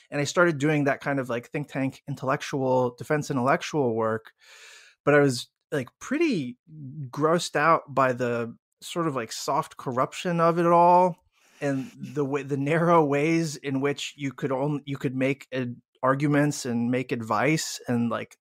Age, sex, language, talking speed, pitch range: 20-39, male, English, 170 wpm, 130-155 Hz